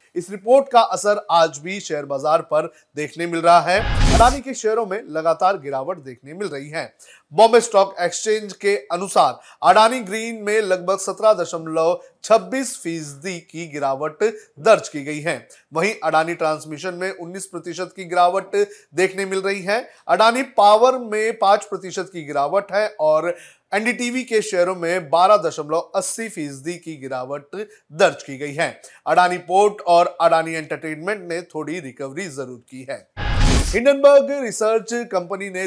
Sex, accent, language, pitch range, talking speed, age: male, native, Hindi, 165-210 Hz, 150 wpm, 30-49